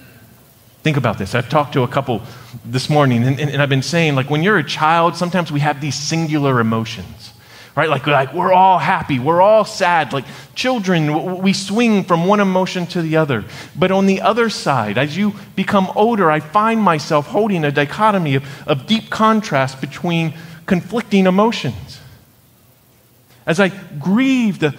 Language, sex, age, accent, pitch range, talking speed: English, male, 40-59, American, 145-210 Hz, 170 wpm